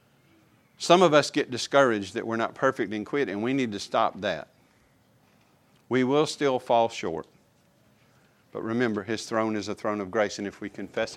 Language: English